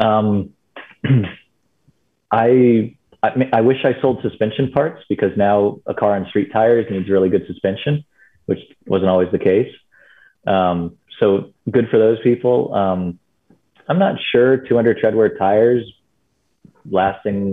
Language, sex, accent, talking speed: English, male, American, 135 wpm